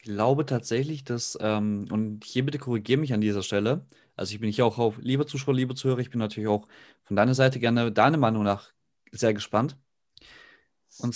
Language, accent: German, German